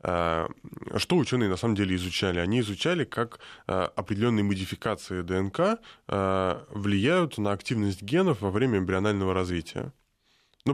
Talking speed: 115 wpm